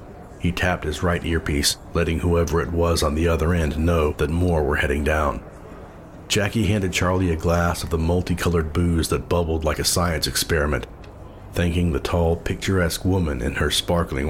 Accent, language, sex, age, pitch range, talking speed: American, English, male, 40-59, 80-90 Hz, 175 wpm